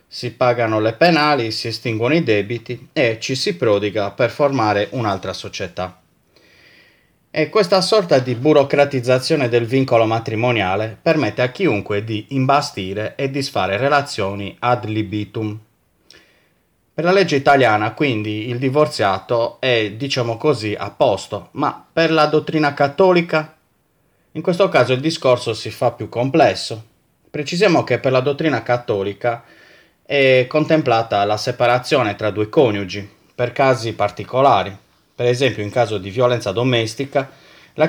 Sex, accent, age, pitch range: male, native, 30-49, 105-140 Hz